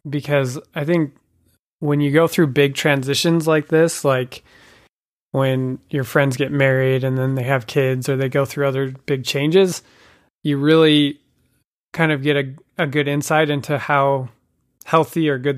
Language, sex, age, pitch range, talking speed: English, male, 30-49, 135-155 Hz, 165 wpm